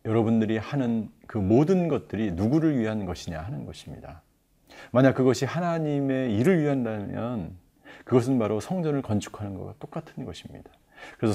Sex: male